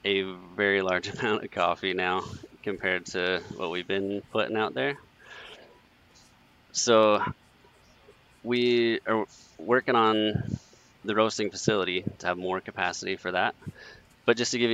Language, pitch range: English, 95-110 Hz